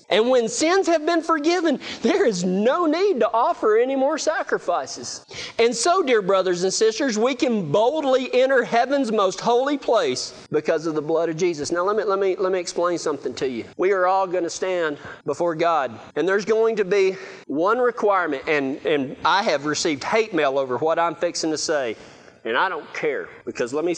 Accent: American